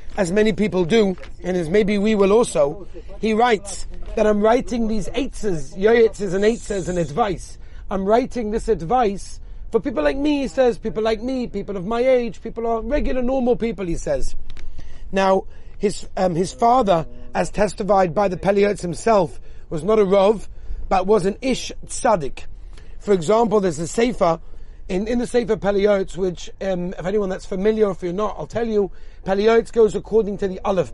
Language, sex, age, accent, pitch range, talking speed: English, male, 40-59, British, 190-230 Hz, 180 wpm